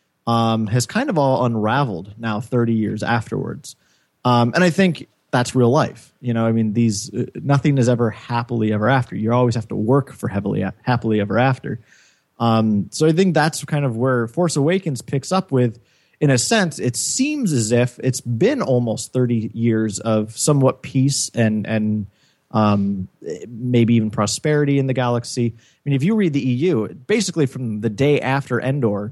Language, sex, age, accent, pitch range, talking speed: English, male, 30-49, American, 115-145 Hz, 185 wpm